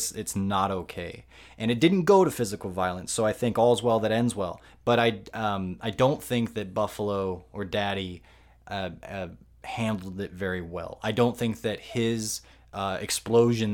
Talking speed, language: 175 wpm, English